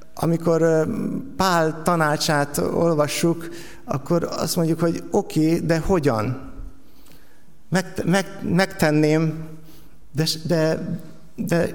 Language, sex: Hungarian, male